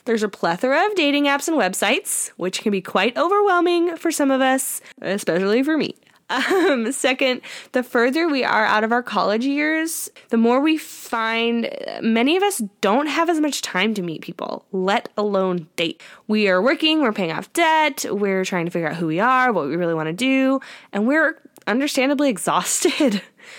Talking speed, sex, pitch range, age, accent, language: 190 wpm, female, 200-285 Hz, 10-29, American, English